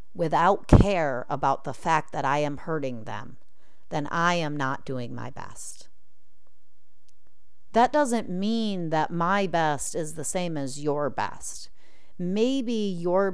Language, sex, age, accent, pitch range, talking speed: English, female, 40-59, American, 145-190 Hz, 140 wpm